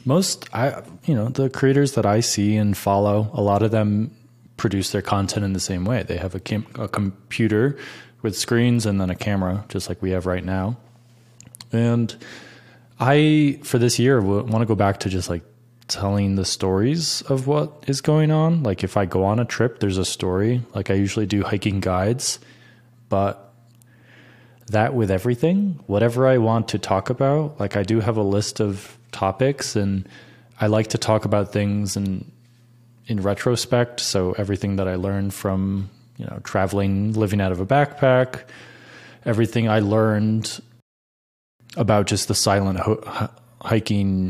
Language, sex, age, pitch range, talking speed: English, male, 20-39, 100-120 Hz, 175 wpm